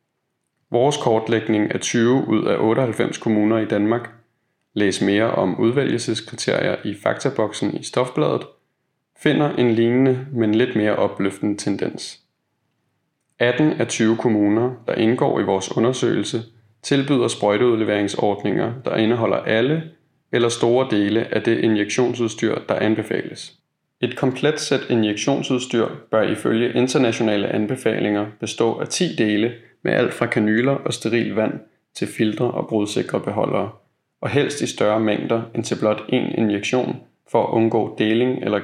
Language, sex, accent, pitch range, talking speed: Danish, male, native, 105-125 Hz, 135 wpm